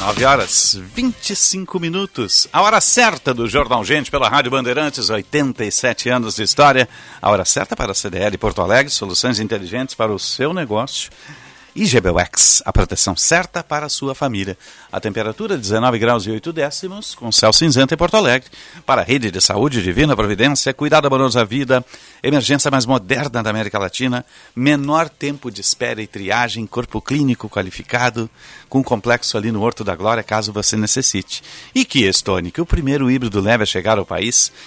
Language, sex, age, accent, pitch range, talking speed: Portuguese, male, 50-69, Brazilian, 110-145 Hz, 175 wpm